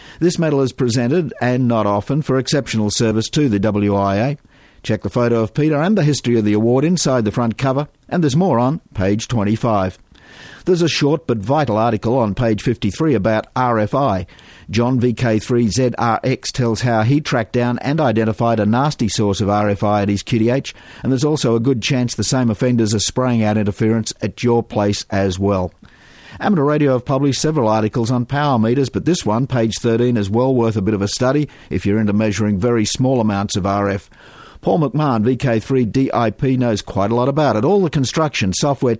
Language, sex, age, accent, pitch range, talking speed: English, male, 50-69, Australian, 110-140 Hz, 195 wpm